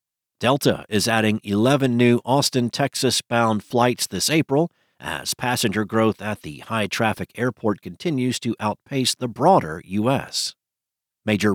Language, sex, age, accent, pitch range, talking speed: English, male, 50-69, American, 110-145 Hz, 120 wpm